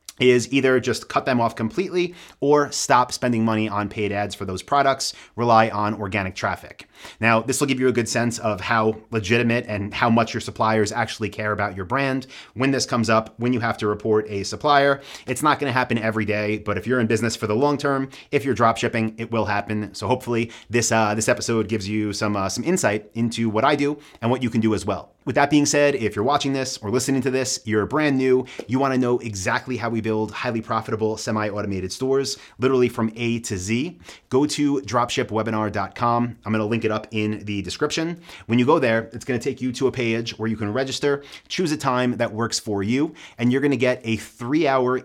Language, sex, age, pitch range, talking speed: English, male, 30-49, 110-130 Hz, 220 wpm